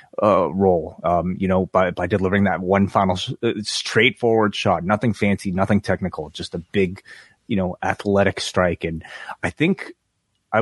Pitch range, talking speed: 95-115 Hz, 165 wpm